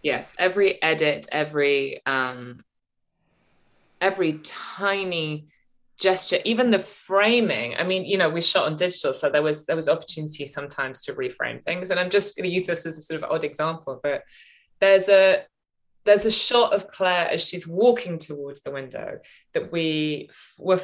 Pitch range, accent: 150-200 Hz, British